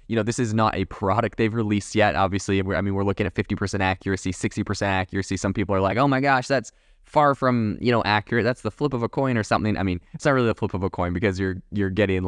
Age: 20-39